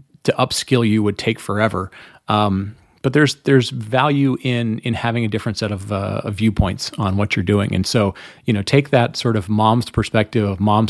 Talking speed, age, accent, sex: 205 wpm, 30-49, American, male